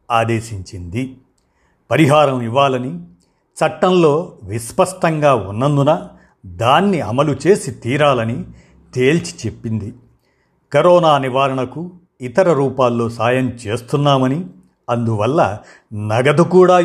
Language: Telugu